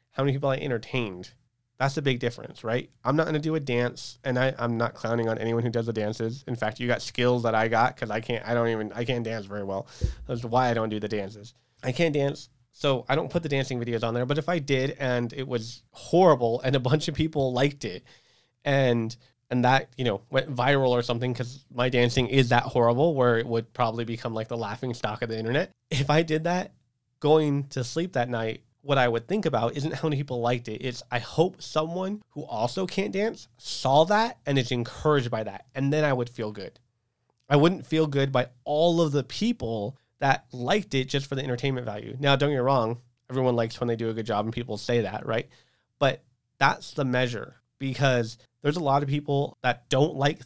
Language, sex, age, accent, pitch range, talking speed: English, male, 30-49, American, 120-145 Hz, 235 wpm